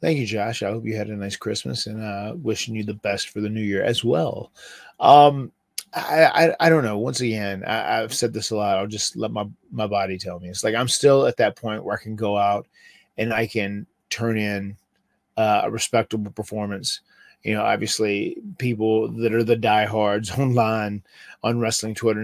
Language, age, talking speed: English, 30-49, 210 wpm